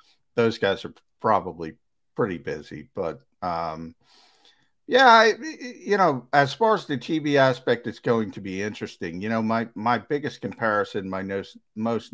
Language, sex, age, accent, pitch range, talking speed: English, male, 50-69, American, 105-130 Hz, 155 wpm